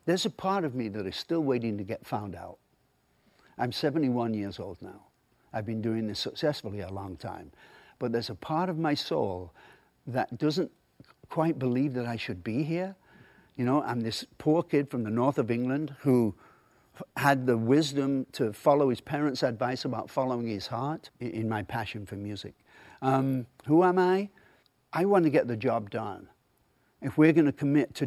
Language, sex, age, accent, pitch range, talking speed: English, male, 60-79, British, 110-145 Hz, 190 wpm